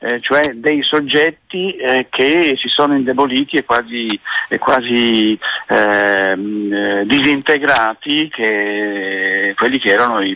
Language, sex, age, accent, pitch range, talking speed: Italian, male, 50-69, native, 110-145 Hz, 105 wpm